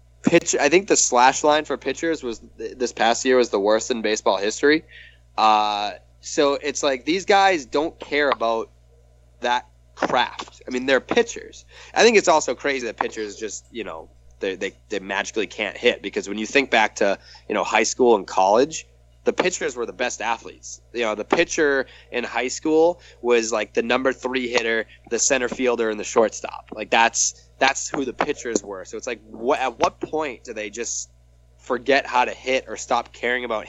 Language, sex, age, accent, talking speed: English, male, 20-39, American, 200 wpm